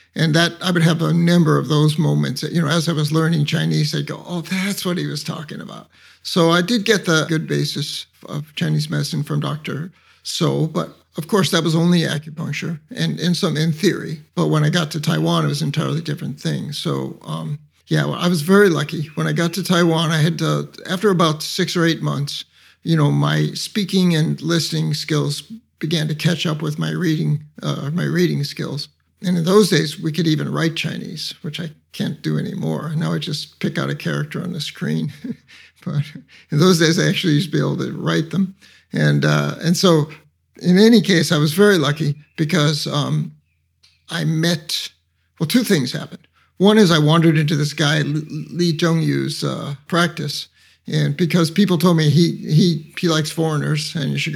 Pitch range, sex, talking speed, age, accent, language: 150-175 Hz, male, 205 wpm, 50-69, American, English